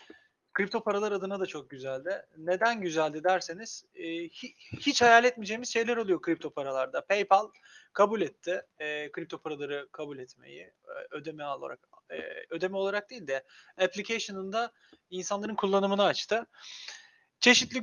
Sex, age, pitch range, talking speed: male, 30-49, 165-225 Hz, 115 wpm